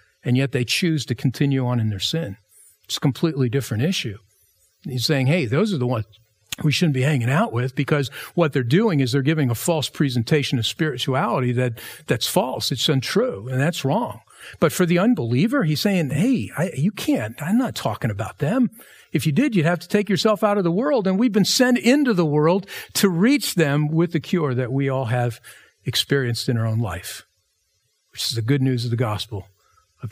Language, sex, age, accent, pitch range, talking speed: English, male, 50-69, American, 125-200 Hz, 205 wpm